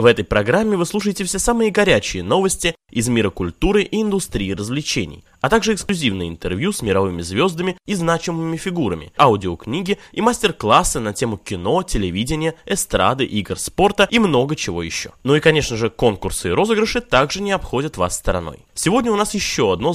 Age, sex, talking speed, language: 20-39, male, 170 wpm, Russian